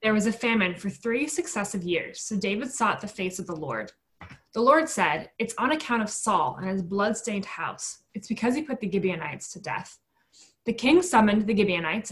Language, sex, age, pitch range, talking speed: English, female, 20-39, 190-230 Hz, 205 wpm